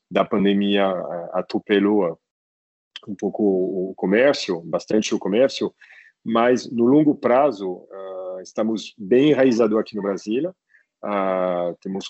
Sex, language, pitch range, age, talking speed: male, Portuguese, 100-120 Hz, 40-59, 115 wpm